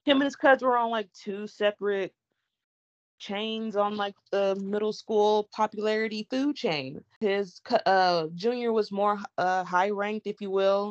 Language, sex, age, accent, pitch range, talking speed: English, female, 20-39, American, 165-205 Hz, 155 wpm